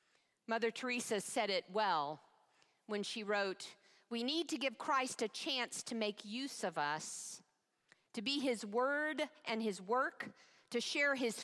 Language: English